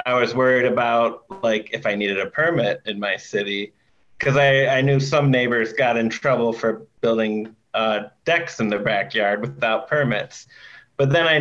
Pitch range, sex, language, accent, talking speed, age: 110-140 Hz, male, English, American, 180 wpm, 30-49